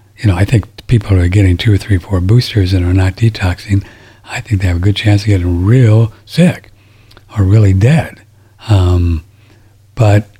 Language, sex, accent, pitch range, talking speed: English, male, American, 100-110 Hz, 190 wpm